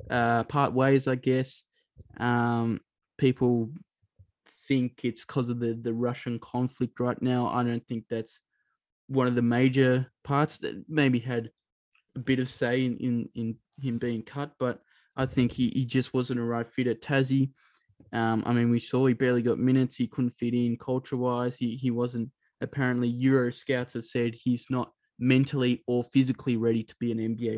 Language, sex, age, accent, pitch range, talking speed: English, male, 20-39, Australian, 120-135 Hz, 180 wpm